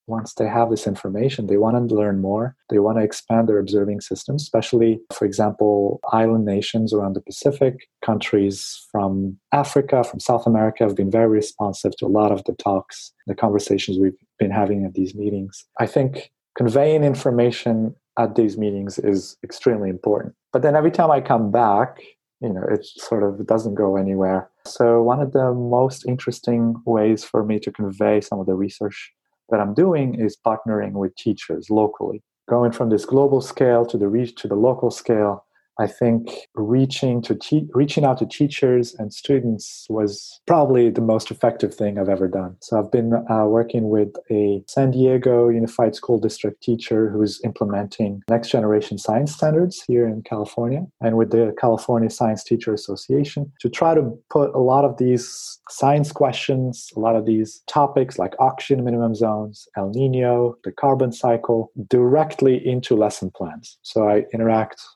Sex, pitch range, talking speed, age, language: male, 105-125 Hz, 175 wpm, 30-49, English